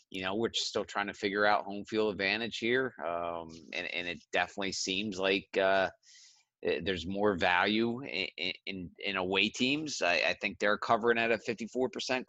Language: English